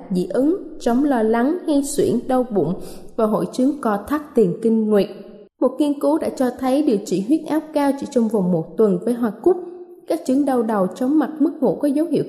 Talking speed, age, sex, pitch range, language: 230 wpm, 20-39, female, 220-285 Hz, Vietnamese